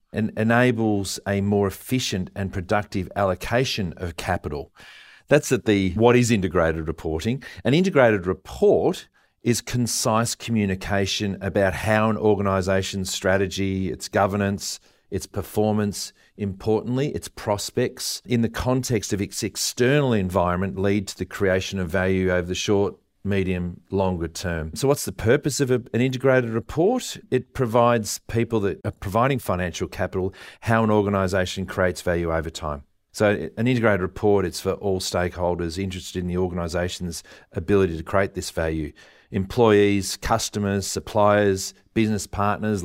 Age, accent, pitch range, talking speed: 40-59, Australian, 95-115 Hz, 140 wpm